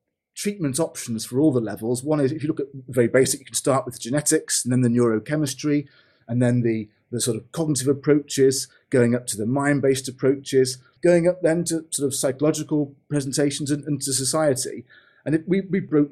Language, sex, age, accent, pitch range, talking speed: English, male, 30-49, British, 125-150 Hz, 205 wpm